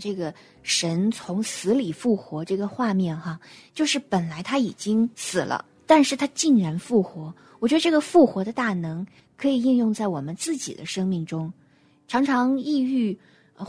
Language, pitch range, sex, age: Chinese, 180-260 Hz, female, 20-39